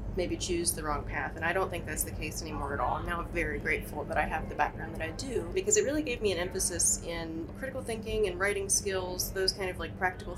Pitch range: 160-190 Hz